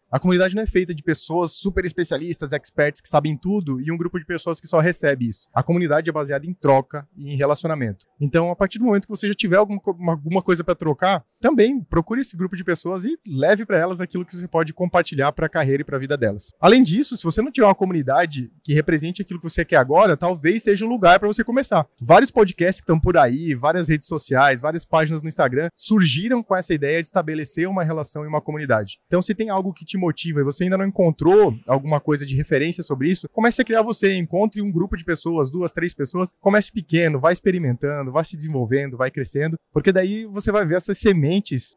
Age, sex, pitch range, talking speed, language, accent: 20-39, male, 150-195 Hz, 230 wpm, Portuguese, Brazilian